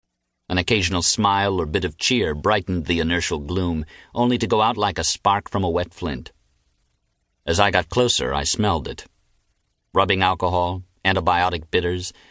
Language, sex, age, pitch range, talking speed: English, male, 50-69, 85-105 Hz, 160 wpm